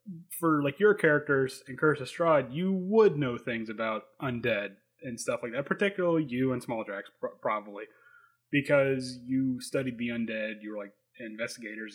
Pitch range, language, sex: 120-150 Hz, English, male